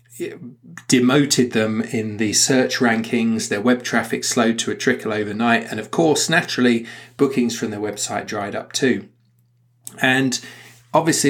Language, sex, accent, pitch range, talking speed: English, male, British, 110-125 Hz, 145 wpm